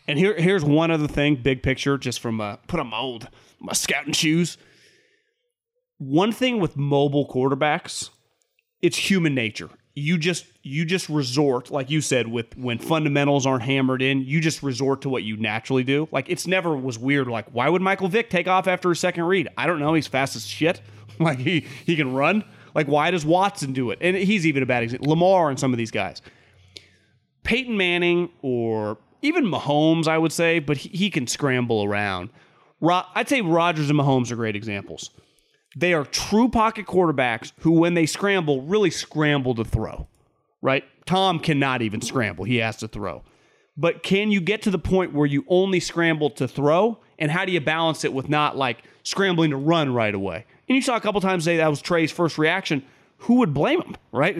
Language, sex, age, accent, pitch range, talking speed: English, male, 30-49, American, 130-180 Hz, 200 wpm